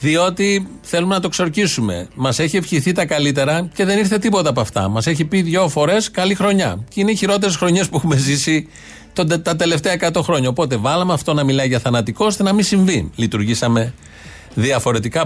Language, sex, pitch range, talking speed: Greek, male, 120-170 Hz, 190 wpm